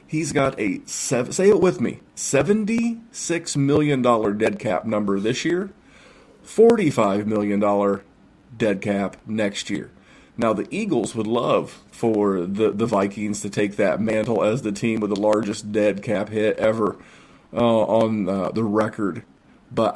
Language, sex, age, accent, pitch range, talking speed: English, male, 40-59, American, 105-135 Hz, 145 wpm